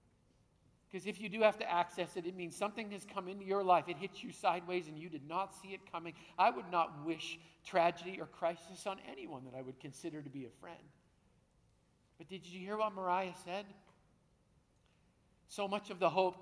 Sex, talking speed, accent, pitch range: male, 205 wpm, American, 175-215 Hz